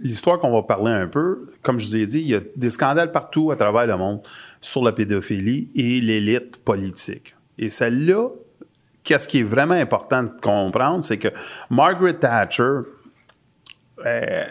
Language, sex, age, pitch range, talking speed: French, male, 30-49, 110-140 Hz, 170 wpm